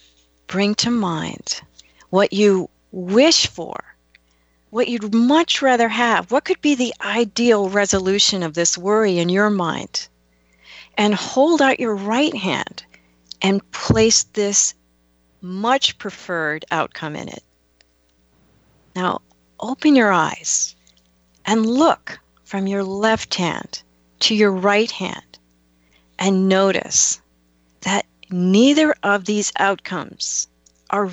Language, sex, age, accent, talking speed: English, female, 40-59, American, 115 wpm